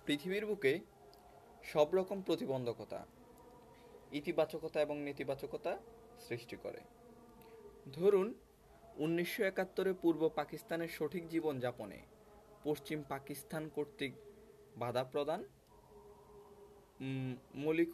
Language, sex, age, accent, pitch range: Bengali, male, 20-39, native, 135-190 Hz